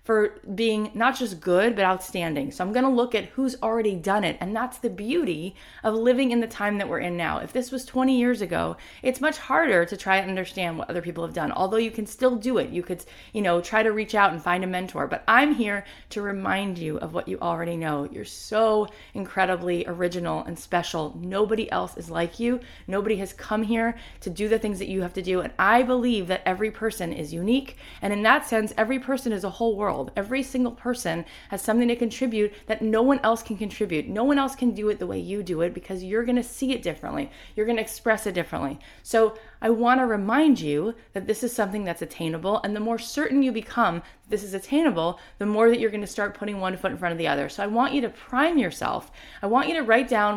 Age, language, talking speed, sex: 20-39, English, 240 wpm, female